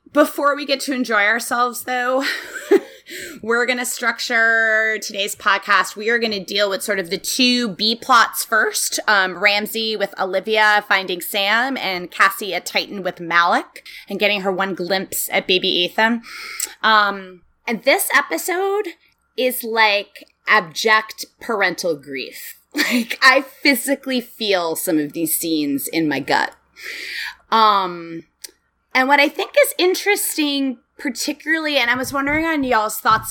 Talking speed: 145 wpm